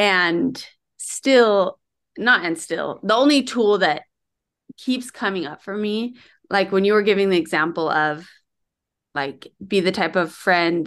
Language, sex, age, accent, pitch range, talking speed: English, female, 20-39, American, 165-215 Hz, 155 wpm